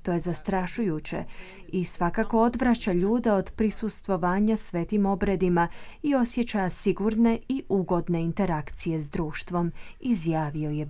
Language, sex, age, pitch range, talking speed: Croatian, female, 30-49, 170-215 Hz, 115 wpm